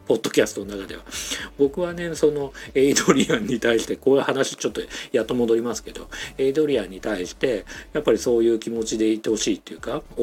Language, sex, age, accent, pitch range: Japanese, male, 50-69, native, 105-155 Hz